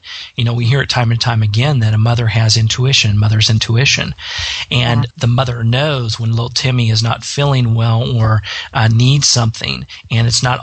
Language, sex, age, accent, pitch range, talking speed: English, male, 40-59, American, 115-130 Hz, 190 wpm